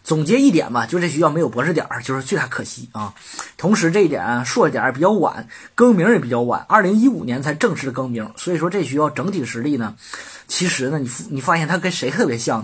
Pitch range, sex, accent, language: 135-200 Hz, male, native, Chinese